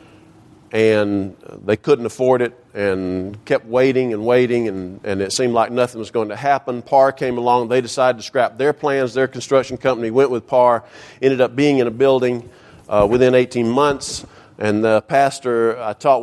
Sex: male